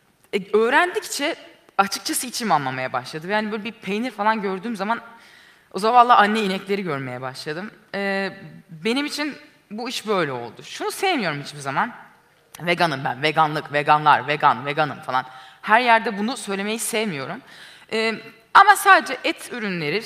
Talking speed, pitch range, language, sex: 145 wpm, 150-210 Hz, Turkish, female